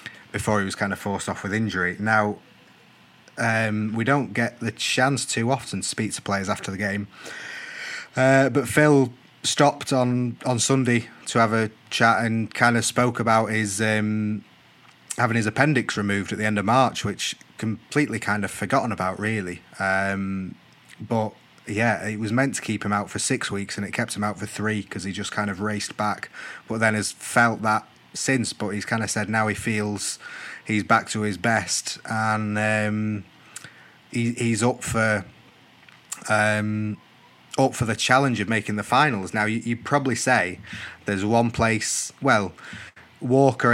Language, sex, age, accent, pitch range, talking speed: English, male, 30-49, British, 105-115 Hz, 175 wpm